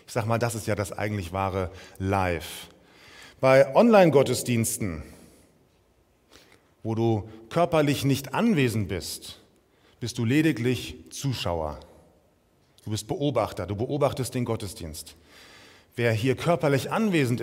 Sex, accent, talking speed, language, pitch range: male, German, 115 wpm, German, 115-160 Hz